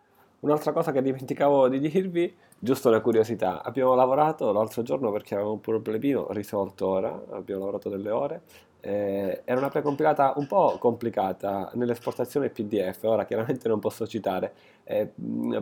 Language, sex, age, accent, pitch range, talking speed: Italian, male, 20-39, native, 95-125 Hz, 145 wpm